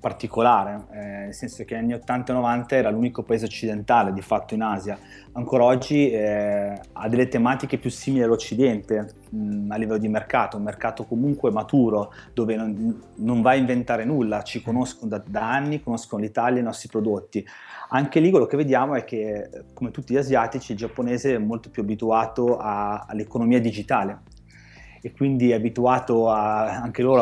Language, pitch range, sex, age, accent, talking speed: Italian, 110-130 Hz, male, 30-49, native, 170 wpm